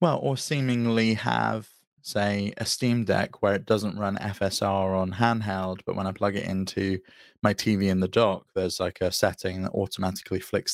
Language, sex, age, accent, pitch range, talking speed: English, male, 20-39, British, 95-110 Hz, 185 wpm